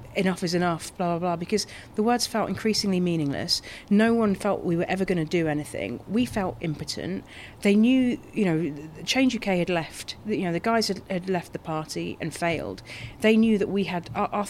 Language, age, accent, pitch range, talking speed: English, 40-59, British, 150-185 Hz, 210 wpm